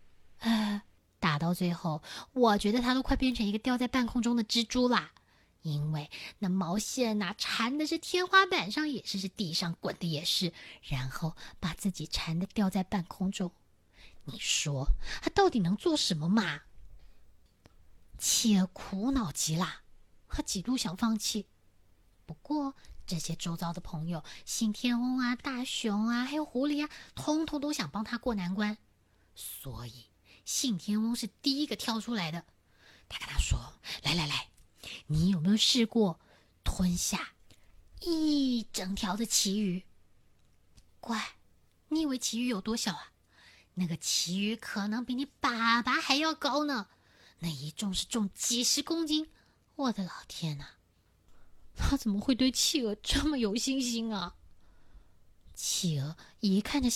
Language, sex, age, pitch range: Chinese, female, 20-39, 165-255 Hz